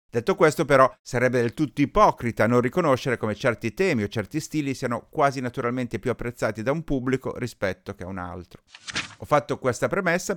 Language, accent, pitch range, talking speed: Italian, native, 110-150 Hz, 185 wpm